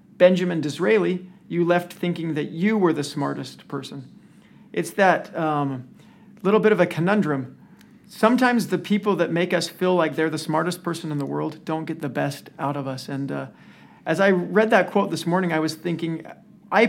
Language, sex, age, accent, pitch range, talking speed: English, male, 40-59, American, 150-190 Hz, 190 wpm